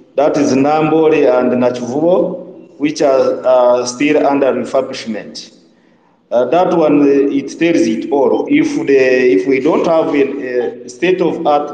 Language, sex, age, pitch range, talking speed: English, male, 50-69, 130-175 Hz, 155 wpm